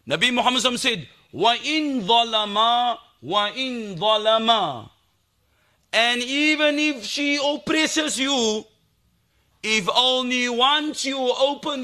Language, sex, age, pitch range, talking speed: English, male, 40-59, 215-285 Hz, 70 wpm